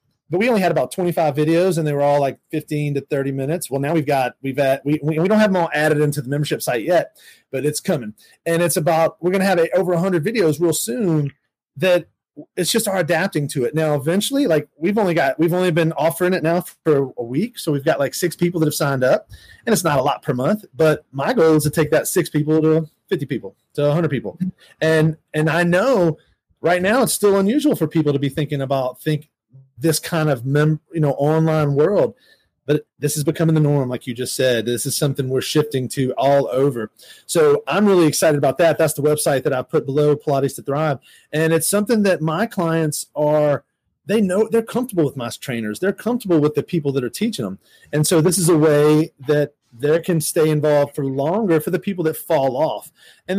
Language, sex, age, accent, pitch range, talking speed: English, male, 30-49, American, 145-175 Hz, 235 wpm